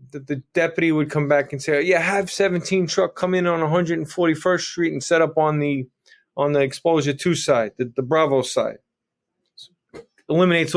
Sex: male